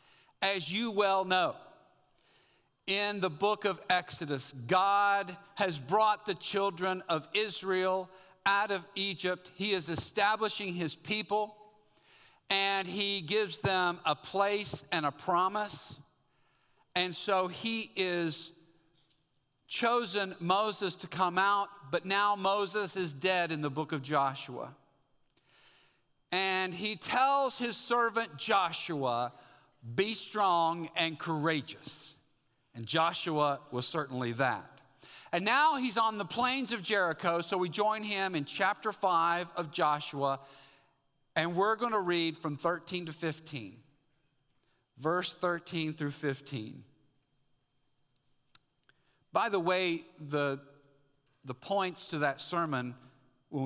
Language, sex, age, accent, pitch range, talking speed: English, male, 50-69, American, 145-200 Hz, 120 wpm